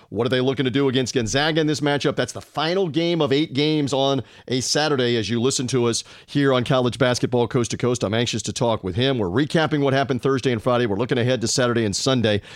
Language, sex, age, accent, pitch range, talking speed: English, male, 40-59, American, 125-160 Hz, 255 wpm